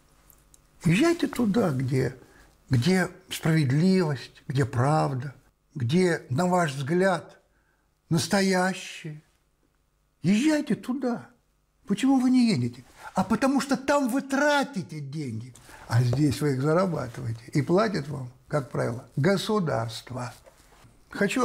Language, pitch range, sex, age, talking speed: Russian, 140-195 Hz, male, 60-79, 105 wpm